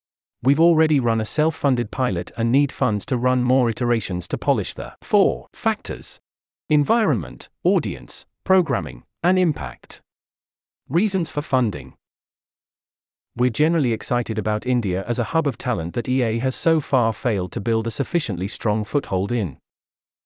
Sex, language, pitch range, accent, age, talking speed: male, English, 105-145 Hz, British, 40-59, 150 wpm